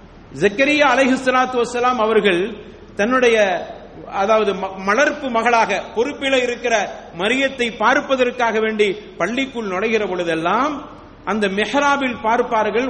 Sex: male